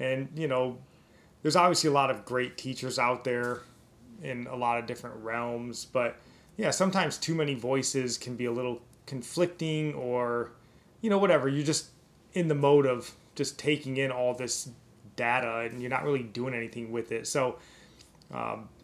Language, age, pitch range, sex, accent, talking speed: English, 20-39, 120-145 Hz, male, American, 175 wpm